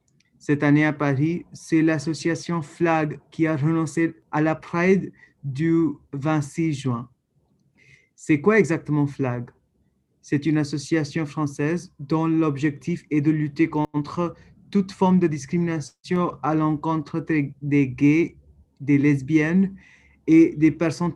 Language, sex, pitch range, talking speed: French, male, 150-170 Hz, 120 wpm